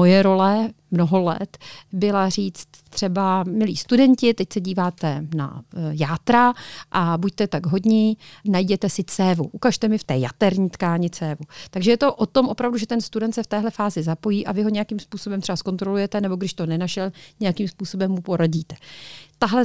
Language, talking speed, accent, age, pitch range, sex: Czech, 175 wpm, native, 40-59, 180-220 Hz, female